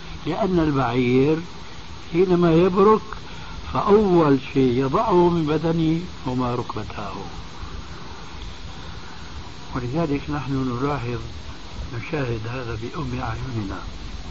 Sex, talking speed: male, 75 wpm